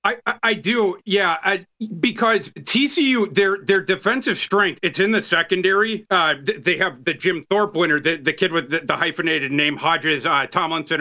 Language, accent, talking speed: English, American, 180 wpm